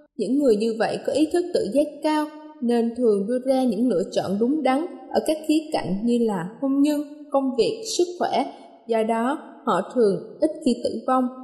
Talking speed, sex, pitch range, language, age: 205 wpm, female, 225-290 Hz, Vietnamese, 20-39